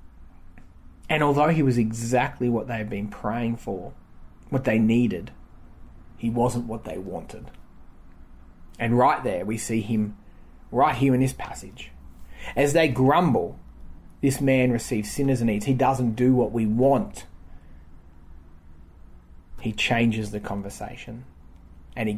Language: English